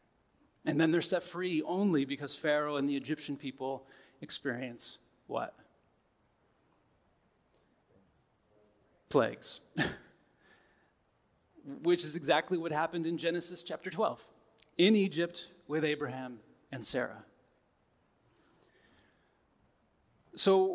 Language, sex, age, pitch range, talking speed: English, male, 30-49, 145-175 Hz, 90 wpm